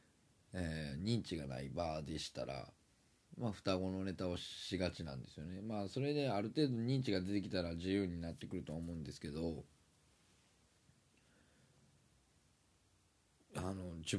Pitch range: 80-105 Hz